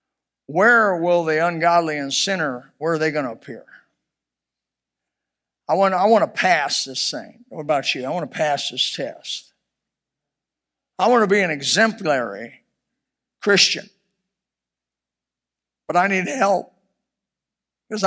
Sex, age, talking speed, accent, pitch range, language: male, 50-69, 135 wpm, American, 150-215 Hz, English